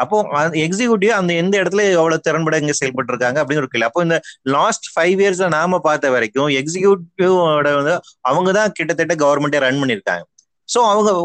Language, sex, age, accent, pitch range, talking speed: Tamil, male, 30-49, native, 145-185 Hz, 170 wpm